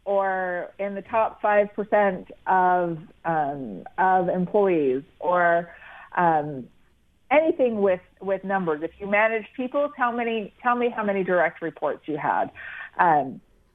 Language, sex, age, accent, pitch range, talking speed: English, female, 30-49, American, 170-210 Hz, 130 wpm